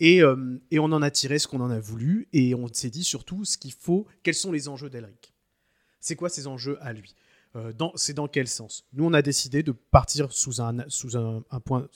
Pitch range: 120-150 Hz